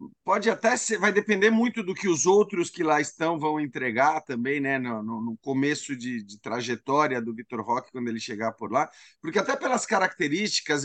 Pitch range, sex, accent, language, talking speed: 140-190 Hz, male, Brazilian, Portuguese, 195 wpm